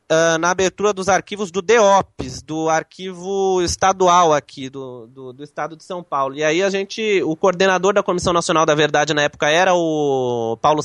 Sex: male